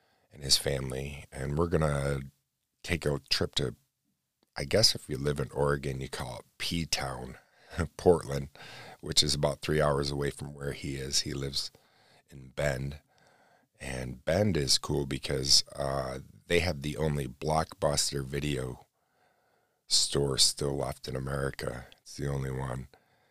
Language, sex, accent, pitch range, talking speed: English, male, American, 65-75 Hz, 145 wpm